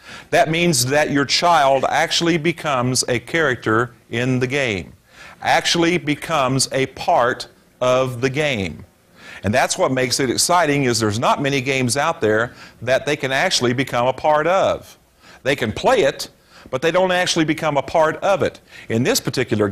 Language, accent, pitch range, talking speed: English, American, 125-170 Hz, 170 wpm